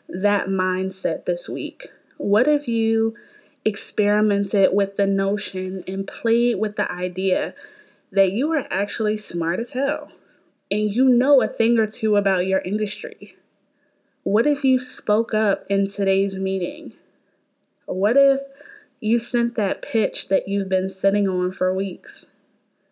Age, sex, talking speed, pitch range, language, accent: 20-39, female, 140 wpm, 190-245 Hz, English, American